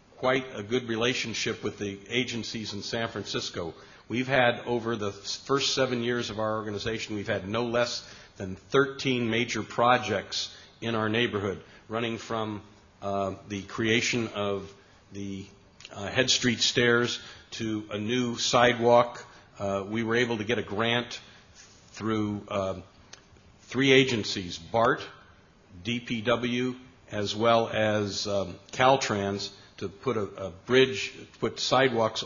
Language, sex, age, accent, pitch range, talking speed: English, male, 50-69, American, 100-125 Hz, 135 wpm